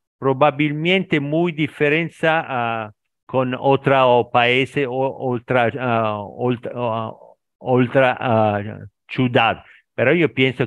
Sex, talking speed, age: male, 95 wpm, 50-69